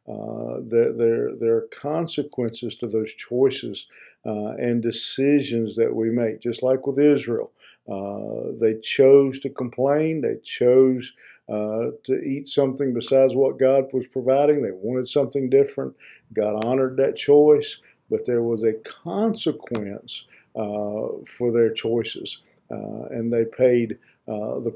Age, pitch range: 50-69, 115-135 Hz